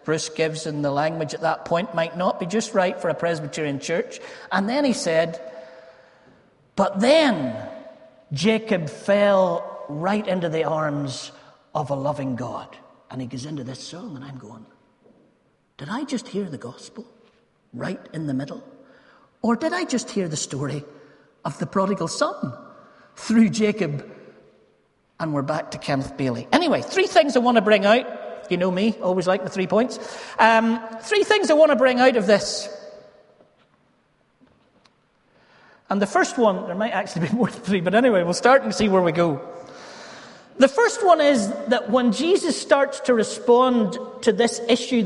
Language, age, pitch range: English, 40-59, 165-235 Hz